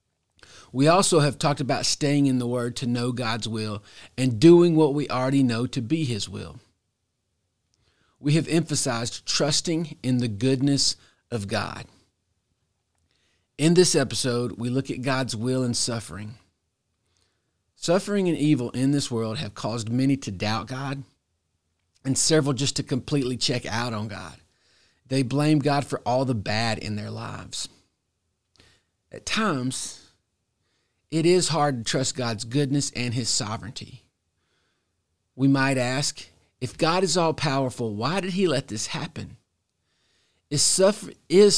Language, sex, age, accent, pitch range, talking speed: English, male, 40-59, American, 105-145 Hz, 145 wpm